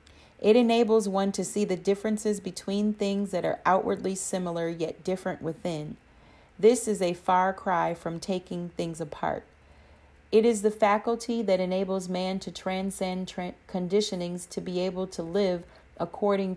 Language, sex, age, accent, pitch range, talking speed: English, female, 40-59, American, 170-195 Hz, 150 wpm